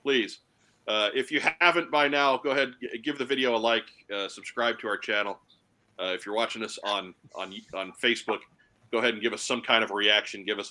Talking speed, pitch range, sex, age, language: 220 wpm, 105-130 Hz, male, 40-59, English